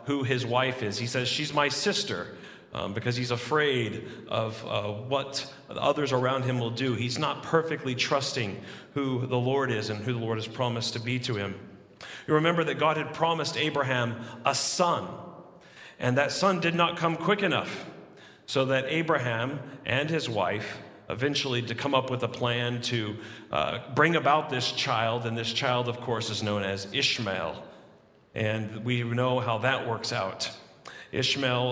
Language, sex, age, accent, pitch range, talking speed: English, male, 40-59, American, 105-135 Hz, 170 wpm